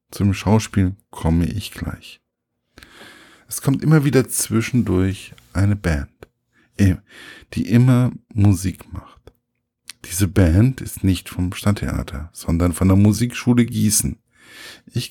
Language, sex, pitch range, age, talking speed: German, male, 90-115 Hz, 50-69, 110 wpm